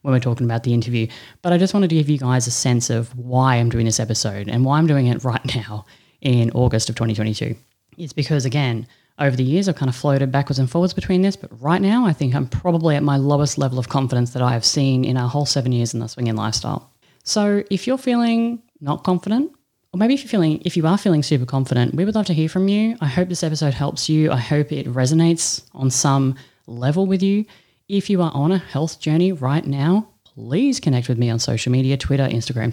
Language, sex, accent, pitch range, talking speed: English, female, Australian, 125-170 Hz, 240 wpm